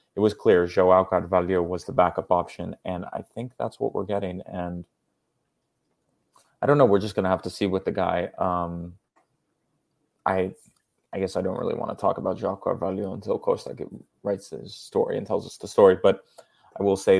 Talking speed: 200 wpm